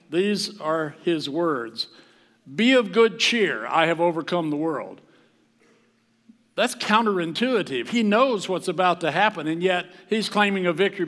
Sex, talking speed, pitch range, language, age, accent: male, 145 wpm, 140-190 Hz, English, 60-79, American